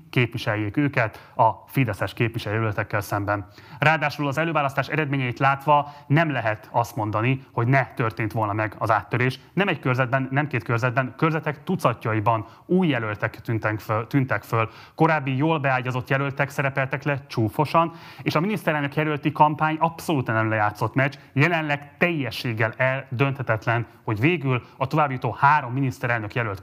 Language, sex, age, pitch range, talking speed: Hungarian, male, 30-49, 115-145 Hz, 135 wpm